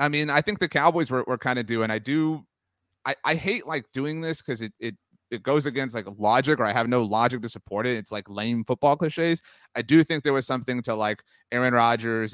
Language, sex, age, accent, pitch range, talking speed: English, male, 30-49, American, 115-150 Hz, 245 wpm